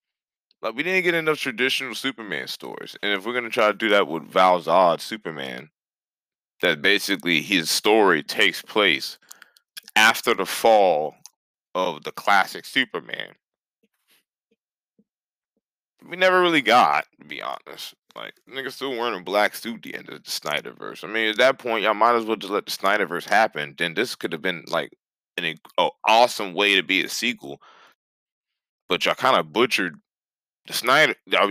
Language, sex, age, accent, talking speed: English, male, 20-39, American, 165 wpm